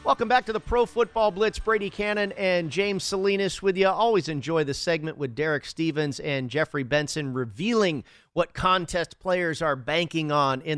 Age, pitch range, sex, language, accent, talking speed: 40-59, 140-170 Hz, male, English, American, 180 wpm